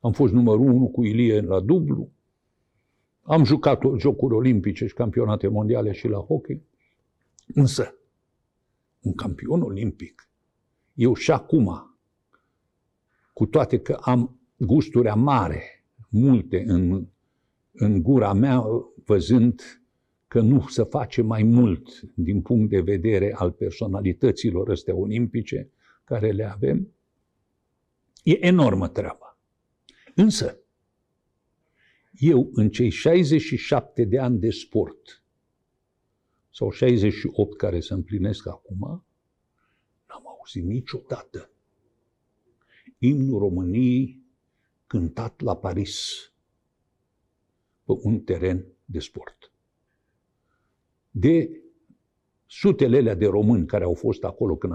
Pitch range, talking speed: 100-130 Hz, 105 wpm